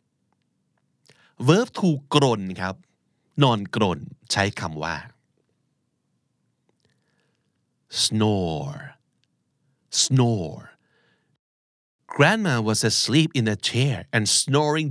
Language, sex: Thai, male